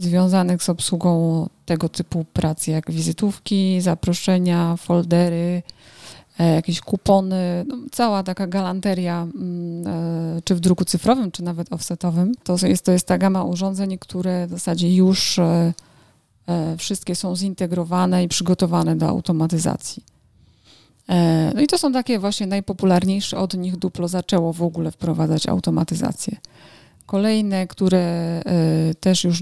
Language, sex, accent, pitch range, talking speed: Polish, female, native, 170-190 Hz, 120 wpm